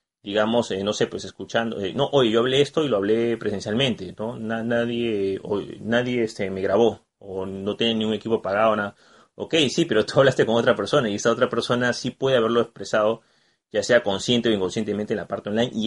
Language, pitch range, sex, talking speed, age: Spanish, 105-130 Hz, male, 215 wpm, 30-49